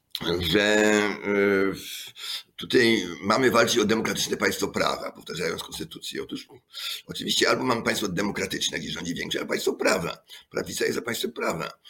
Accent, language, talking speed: native, Polish, 135 wpm